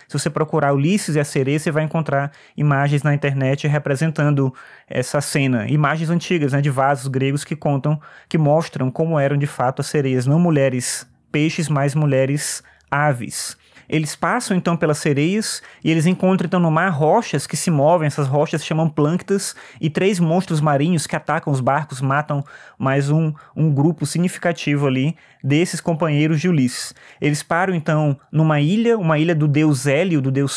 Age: 20-39